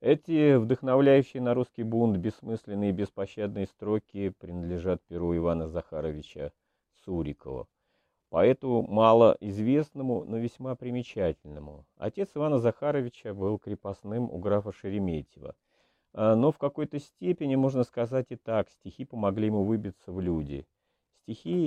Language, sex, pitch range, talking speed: Russian, male, 95-120 Hz, 115 wpm